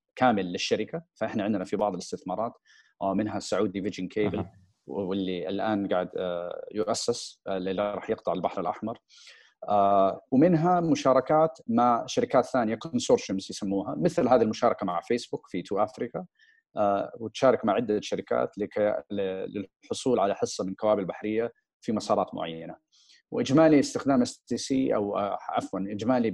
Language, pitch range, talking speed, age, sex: Arabic, 100-135 Hz, 125 wpm, 40-59, male